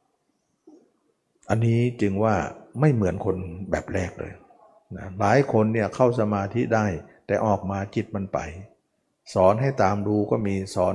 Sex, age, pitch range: male, 60-79, 95-120 Hz